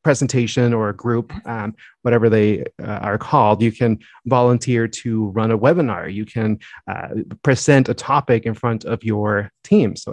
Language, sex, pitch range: English, male, 110-140 Hz